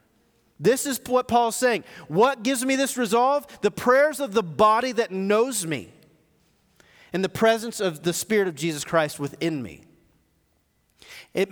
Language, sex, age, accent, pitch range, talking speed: English, male, 40-59, American, 165-235 Hz, 155 wpm